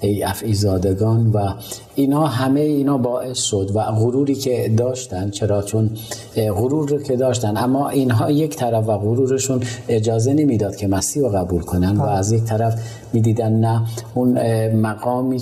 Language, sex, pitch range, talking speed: Persian, male, 100-120 Hz, 160 wpm